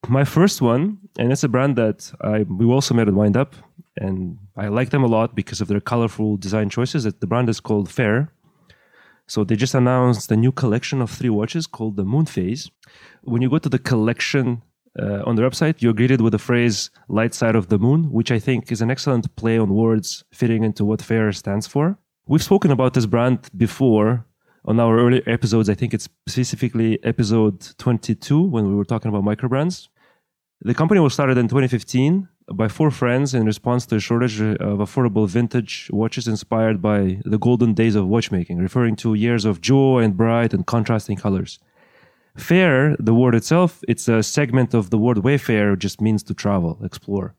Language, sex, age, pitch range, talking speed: English, male, 20-39, 105-130 Hz, 195 wpm